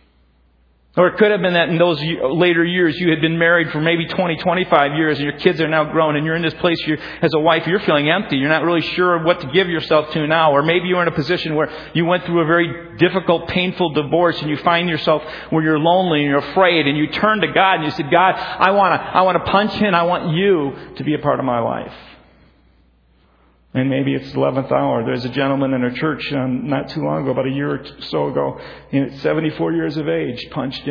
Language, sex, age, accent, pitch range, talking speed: English, male, 40-59, American, 125-165 Hz, 245 wpm